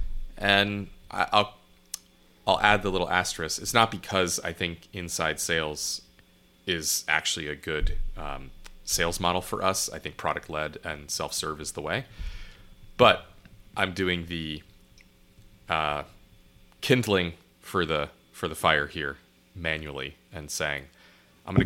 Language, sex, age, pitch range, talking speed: English, male, 30-49, 80-95 Hz, 135 wpm